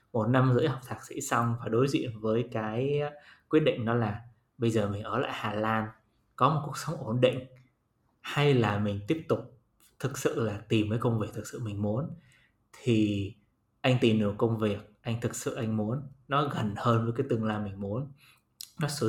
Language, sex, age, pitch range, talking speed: Vietnamese, male, 20-39, 115-140 Hz, 210 wpm